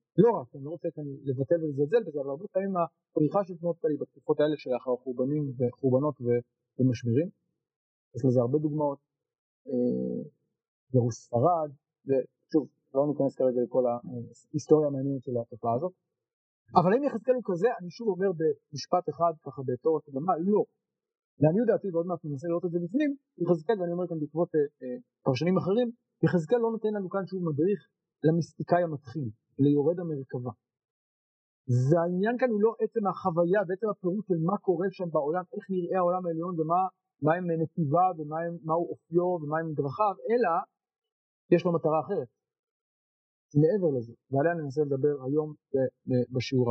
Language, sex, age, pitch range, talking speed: Hebrew, male, 40-59, 135-185 Hz, 155 wpm